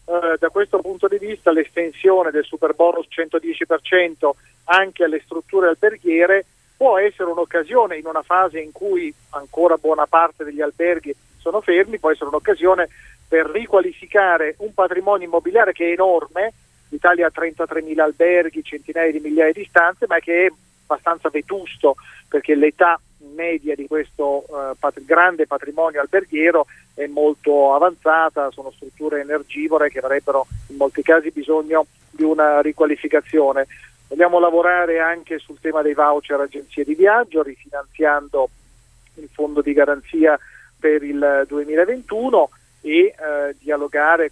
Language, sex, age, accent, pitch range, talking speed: Italian, male, 40-59, native, 145-175 Hz, 135 wpm